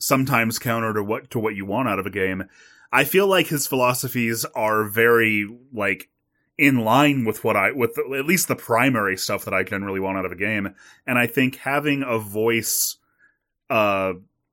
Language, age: English, 30-49